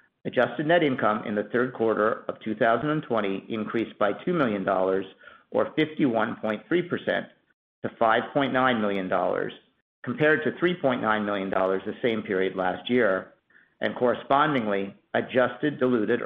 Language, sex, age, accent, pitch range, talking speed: English, male, 50-69, American, 105-130 Hz, 115 wpm